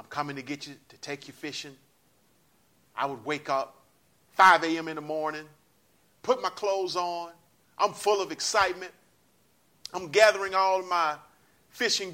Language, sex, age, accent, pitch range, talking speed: English, male, 40-59, American, 125-180 Hz, 160 wpm